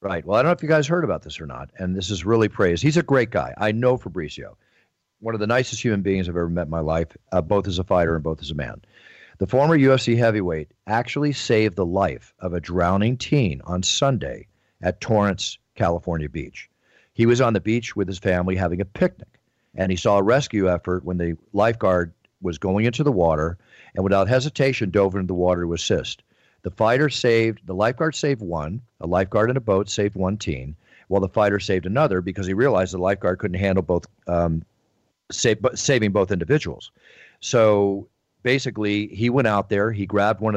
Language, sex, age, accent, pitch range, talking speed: English, male, 50-69, American, 90-120 Hz, 210 wpm